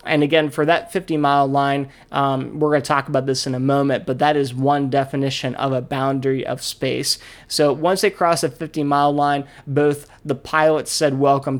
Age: 20-39